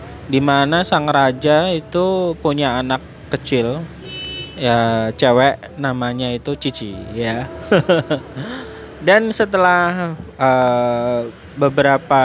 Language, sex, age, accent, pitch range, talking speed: Indonesian, male, 20-39, native, 120-150 Hz, 90 wpm